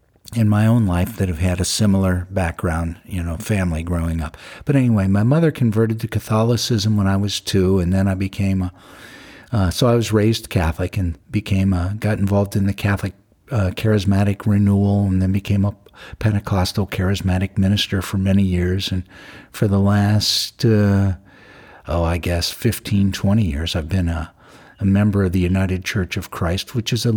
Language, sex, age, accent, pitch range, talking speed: English, male, 50-69, American, 95-115 Hz, 185 wpm